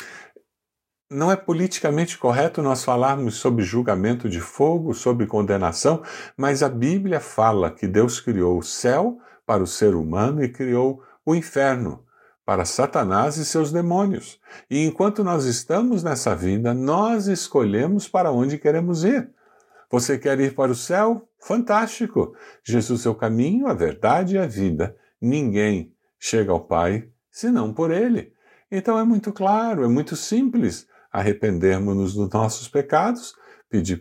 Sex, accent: male, Brazilian